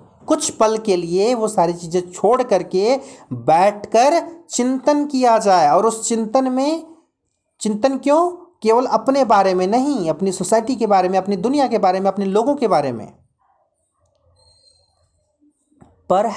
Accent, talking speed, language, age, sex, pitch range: native, 145 wpm, Hindi, 40-59, male, 200-285 Hz